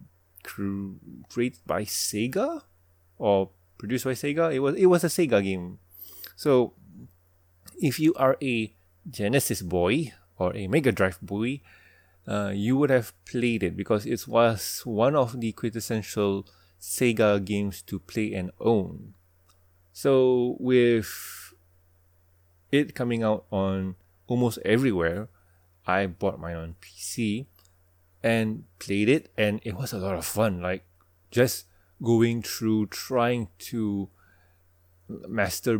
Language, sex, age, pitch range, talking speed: English, male, 30-49, 90-115 Hz, 125 wpm